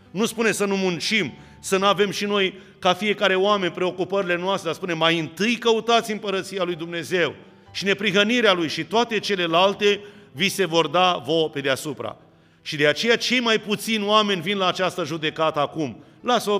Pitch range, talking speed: 145-190 Hz, 175 wpm